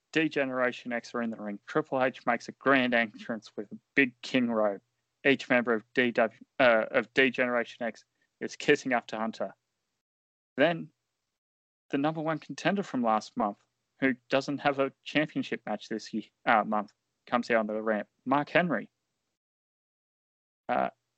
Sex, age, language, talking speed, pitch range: male, 20-39, English, 145 wpm, 115-135 Hz